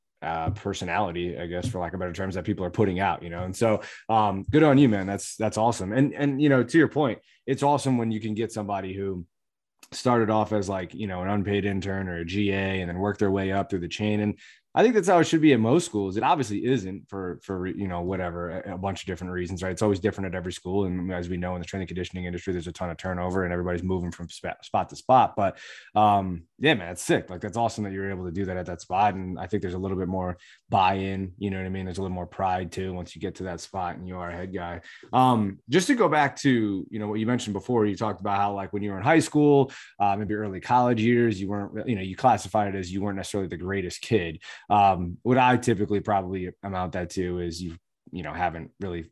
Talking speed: 270 wpm